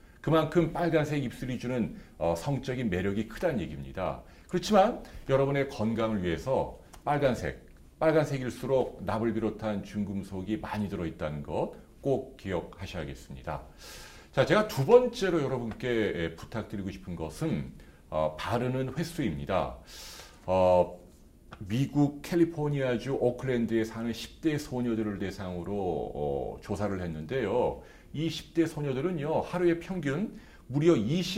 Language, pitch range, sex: Korean, 100-145 Hz, male